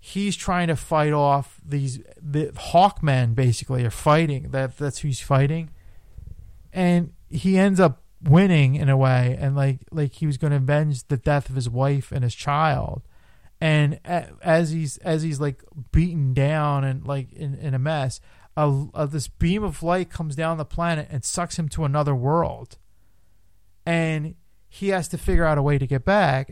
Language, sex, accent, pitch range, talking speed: English, male, American, 125-155 Hz, 185 wpm